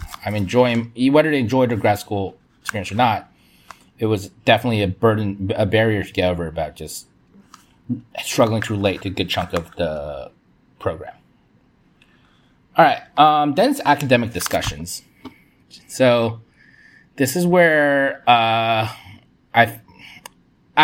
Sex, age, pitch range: male, 30-49, 100-125 Hz